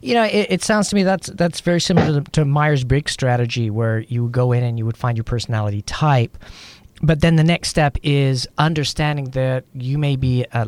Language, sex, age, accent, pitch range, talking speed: English, male, 40-59, American, 115-140 Hz, 225 wpm